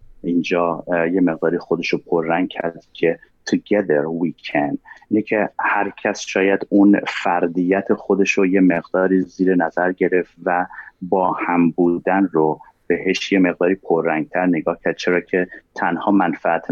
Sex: male